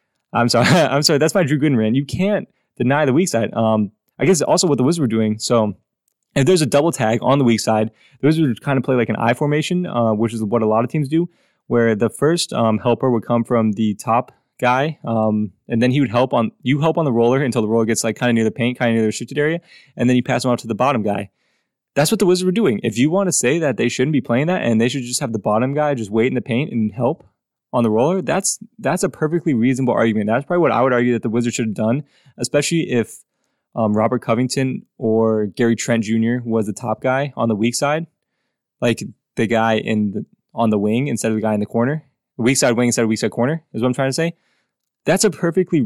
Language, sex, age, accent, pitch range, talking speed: English, male, 20-39, American, 115-150 Hz, 265 wpm